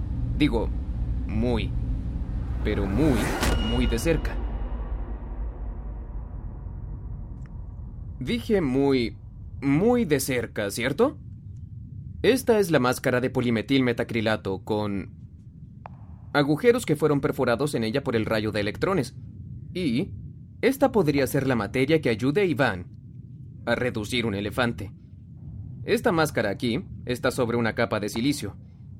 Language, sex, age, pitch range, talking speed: English, male, 30-49, 105-135 Hz, 115 wpm